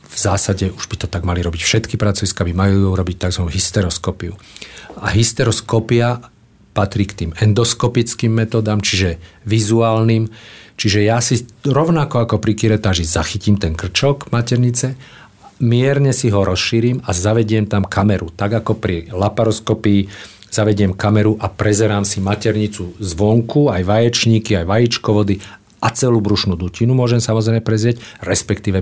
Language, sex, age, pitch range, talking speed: Slovak, male, 50-69, 95-120 Hz, 135 wpm